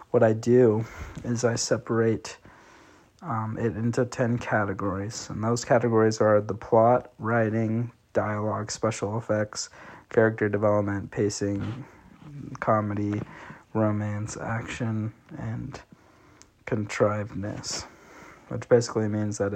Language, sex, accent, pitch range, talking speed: English, male, American, 105-115 Hz, 100 wpm